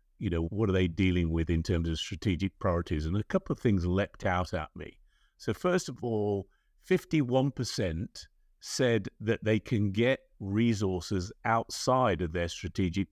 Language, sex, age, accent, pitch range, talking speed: English, male, 50-69, British, 85-115 Hz, 165 wpm